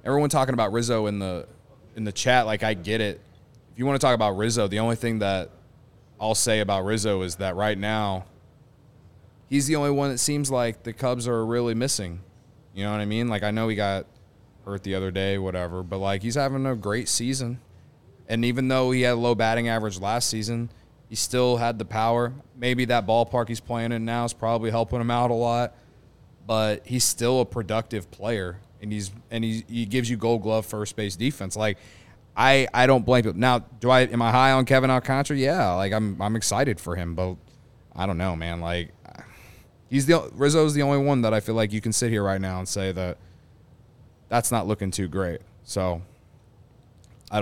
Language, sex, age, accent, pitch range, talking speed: English, male, 20-39, American, 100-125 Hz, 215 wpm